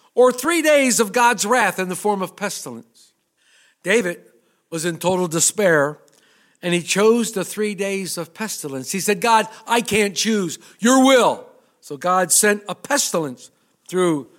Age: 50-69